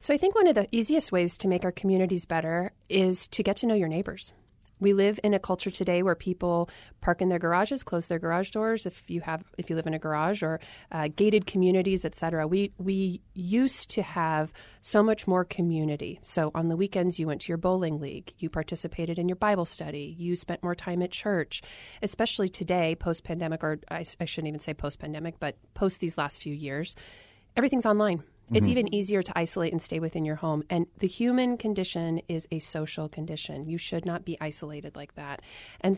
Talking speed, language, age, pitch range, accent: 210 wpm, English, 30-49, 160-195 Hz, American